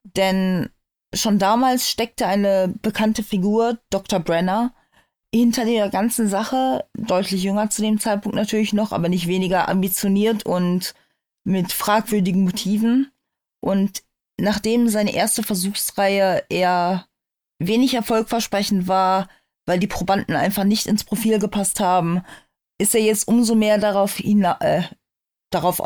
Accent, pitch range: German, 185-220 Hz